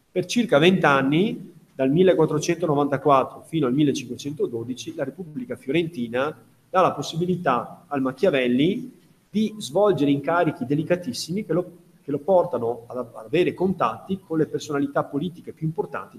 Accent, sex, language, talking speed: native, male, Italian, 130 wpm